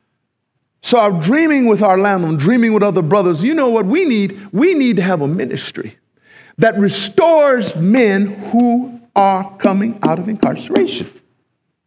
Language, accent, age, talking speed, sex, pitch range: English, American, 50-69, 150 wpm, male, 185-305 Hz